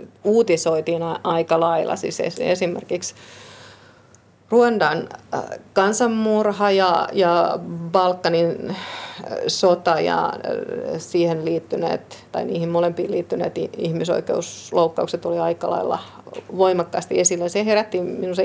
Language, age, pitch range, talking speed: Finnish, 30-49, 170-195 Hz, 90 wpm